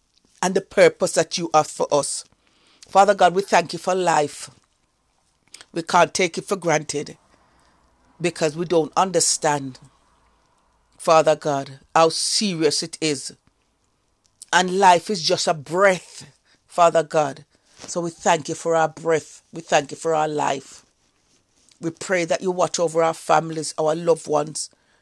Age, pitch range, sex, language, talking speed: 40-59, 155-180 Hz, female, English, 150 wpm